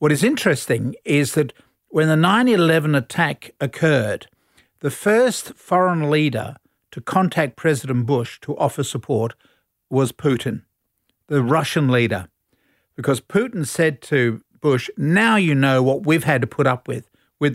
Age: 50-69